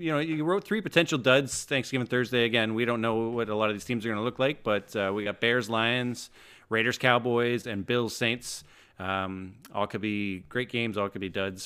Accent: American